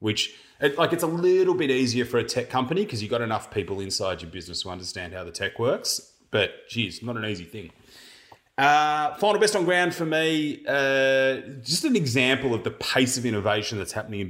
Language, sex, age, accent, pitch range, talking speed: English, male, 30-49, Australian, 100-130 Hz, 210 wpm